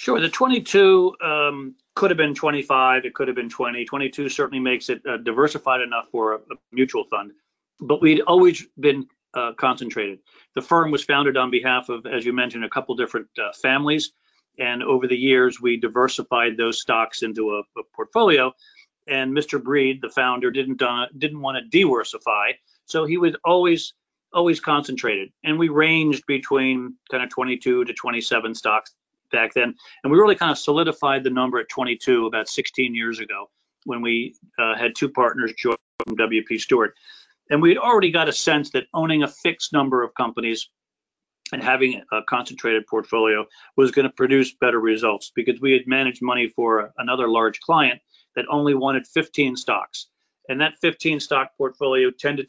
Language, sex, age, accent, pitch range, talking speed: English, male, 40-59, American, 125-150 Hz, 175 wpm